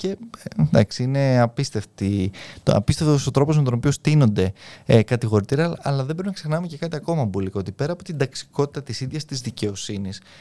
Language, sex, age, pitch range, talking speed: Greek, male, 20-39, 110-160 Hz, 185 wpm